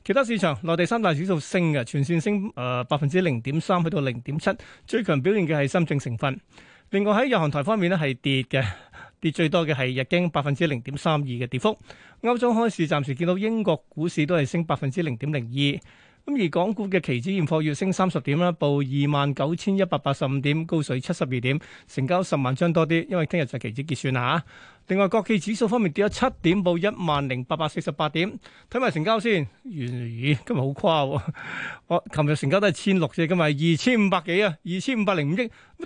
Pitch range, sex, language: 145-190 Hz, male, Chinese